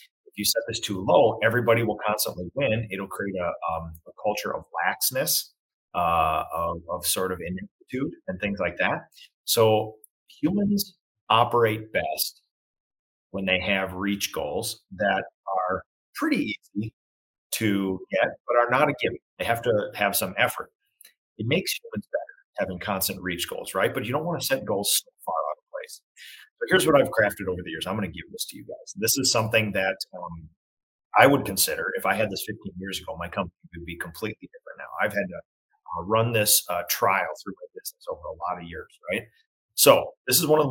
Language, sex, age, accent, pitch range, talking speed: English, male, 40-59, American, 95-160 Hz, 195 wpm